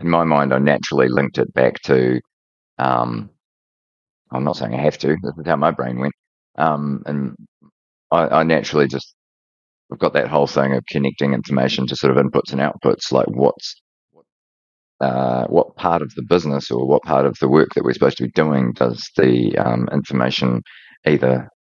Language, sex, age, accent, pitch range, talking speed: English, male, 30-49, Australian, 65-85 Hz, 185 wpm